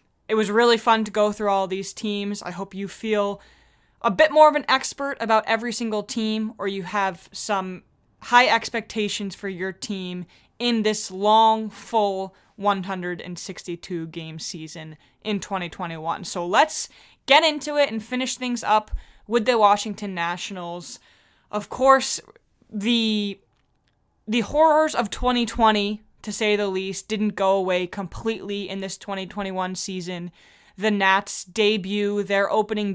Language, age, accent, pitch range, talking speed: English, 20-39, American, 190-220 Hz, 140 wpm